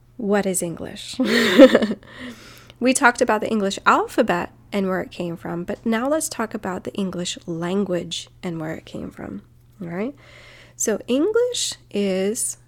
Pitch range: 165-215 Hz